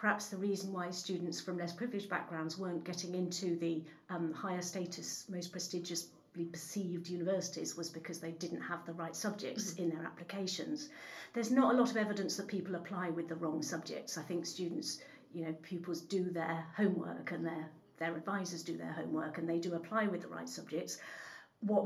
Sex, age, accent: female, 50-69, British